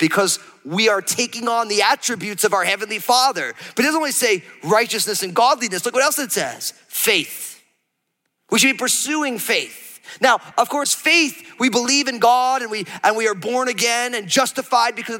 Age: 30-49